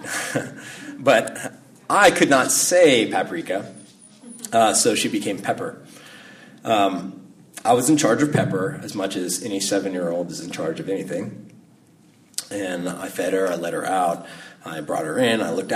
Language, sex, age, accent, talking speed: English, male, 30-49, American, 170 wpm